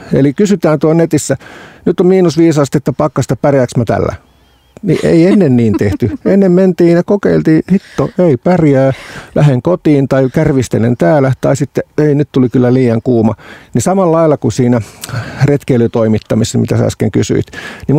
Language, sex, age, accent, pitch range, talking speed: Finnish, male, 50-69, native, 115-150 Hz, 155 wpm